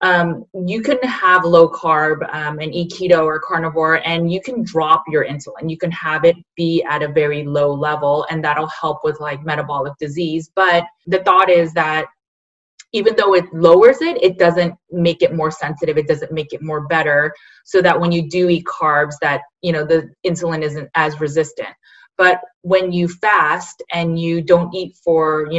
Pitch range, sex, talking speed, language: 155-180 Hz, female, 190 wpm, English